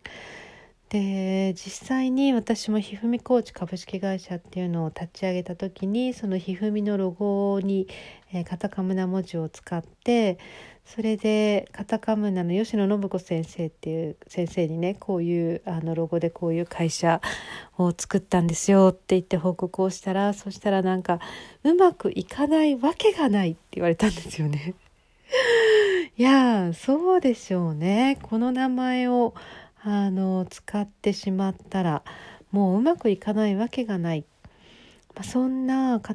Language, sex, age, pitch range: Japanese, female, 40-59, 180-230 Hz